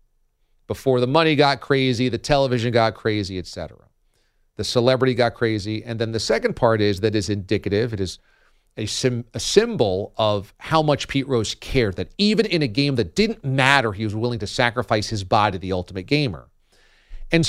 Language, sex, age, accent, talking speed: English, male, 40-59, American, 185 wpm